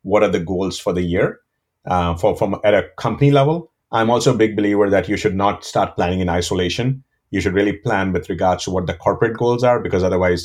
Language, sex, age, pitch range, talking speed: English, male, 30-49, 90-115 Hz, 235 wpm